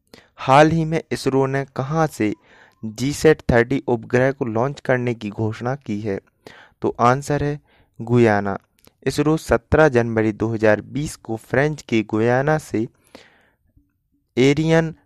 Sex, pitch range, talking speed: male, 110-140 Hz, 130 wpm